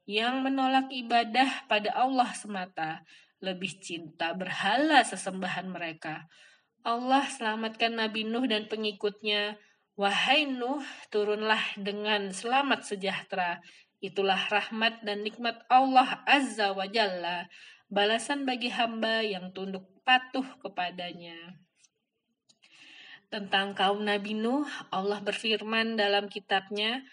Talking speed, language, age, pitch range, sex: 100 wpm, Indonesian, 20-39, 195-260 Hz, female